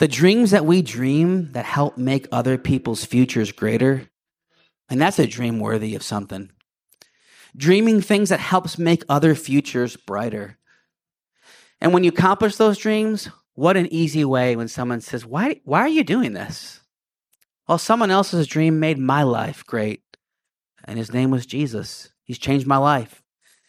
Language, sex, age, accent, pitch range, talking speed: English, male, 30-49, American, 125-185 Hz, 160 wpm